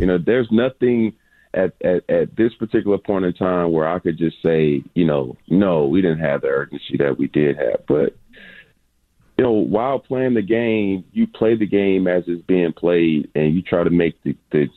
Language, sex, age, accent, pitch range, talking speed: English, male, 30-49, American, 80-95 Hz, 205 wpm